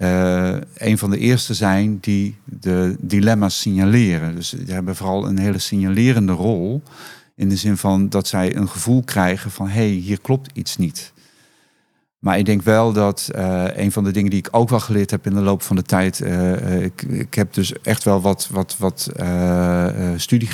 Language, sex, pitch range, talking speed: Dutch, male, 95-115 Hz, 195 wpm